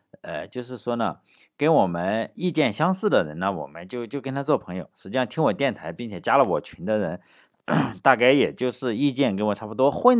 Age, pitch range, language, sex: 50-69, 100-140 Hz, Chinese, male